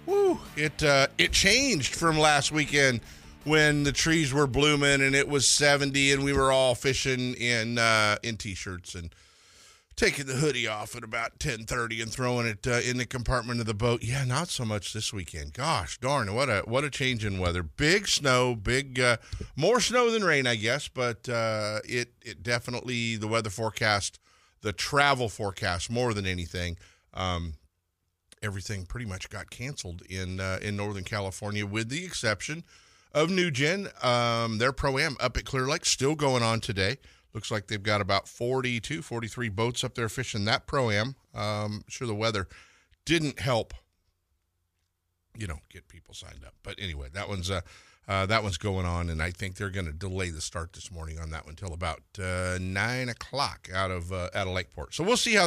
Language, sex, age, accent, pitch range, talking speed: English, male, 50-69, American, 95-130 Hz, 190 wpm